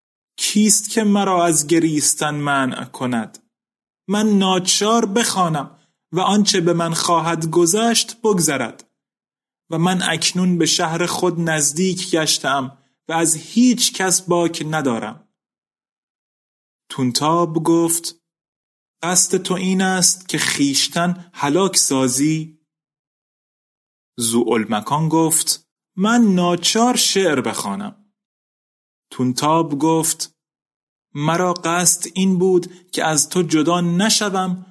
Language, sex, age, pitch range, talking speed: Persian, male, 30-49, 155-190 Hz, 100 wpm